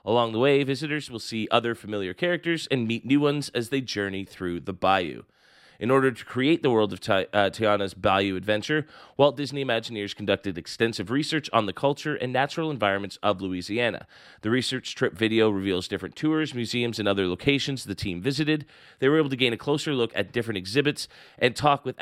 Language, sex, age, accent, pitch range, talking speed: English, male, 30-49, American, 105-135 Hz, 195 wpm